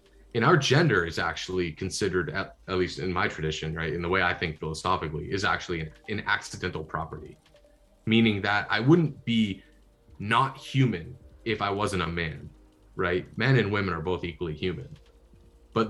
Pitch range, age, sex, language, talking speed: 85-105 Hz, 20-39, male, English, 175 wpm